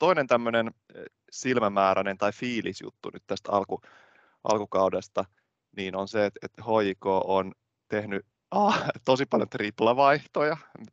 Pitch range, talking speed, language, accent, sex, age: 100-120 Hz, 100 wpm, Finnish, native, male, 20-39